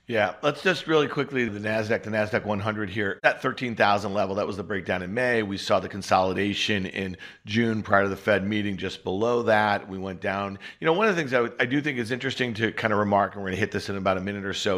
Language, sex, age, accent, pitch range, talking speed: English, male, 50-69, American, 105-135 Hz, 270 wpm